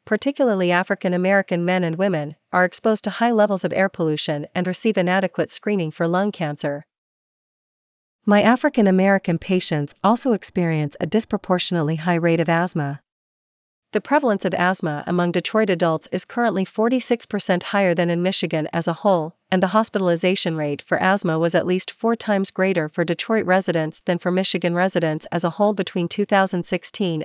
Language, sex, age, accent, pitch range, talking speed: English, female, 40-59, American, 170-200 Hz, 160 wpm